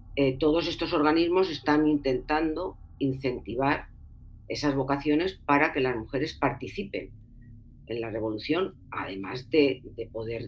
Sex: female